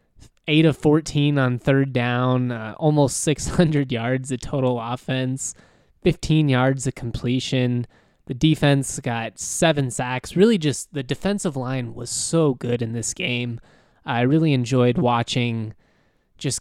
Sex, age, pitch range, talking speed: male, 20-39, 120-140 Hz, 140 wpm